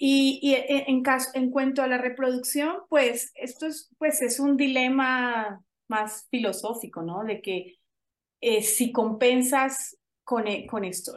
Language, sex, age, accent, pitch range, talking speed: Spanish, female, 30-49, Colombian, 185-255 Hz, 145 wpm